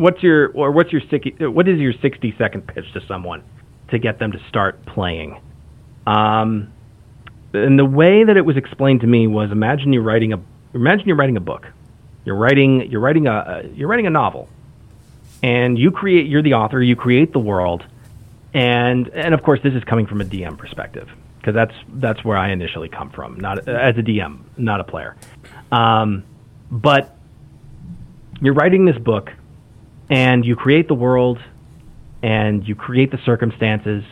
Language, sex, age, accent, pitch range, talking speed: English, male, 40-59, American, 105-130 Hz, 175 wpm